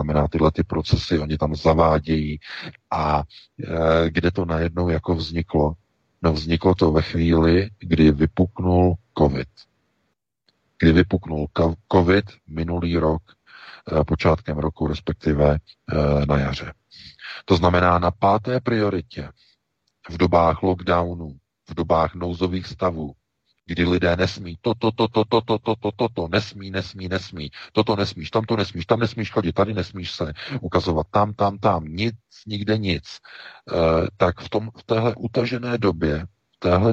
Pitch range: 80-100 Hz